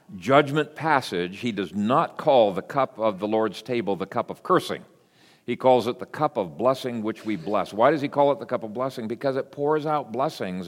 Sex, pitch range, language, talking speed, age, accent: male, 100-135 Hz, English, 225 wpm, 50-69, American